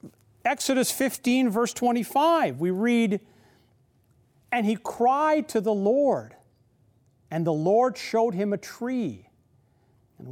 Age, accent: 50-69, American